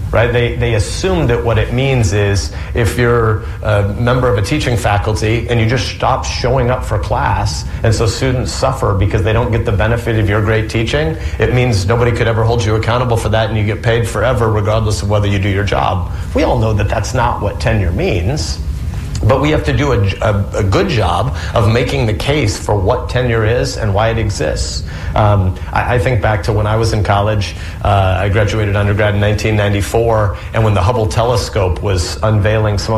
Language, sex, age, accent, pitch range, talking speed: English, male, 40-59, American, 100-120 Hz, 210 wpm